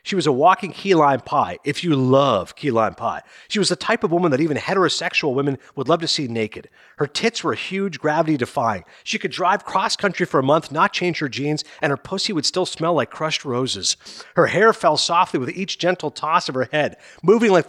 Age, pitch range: 40-59, 135-185 Hz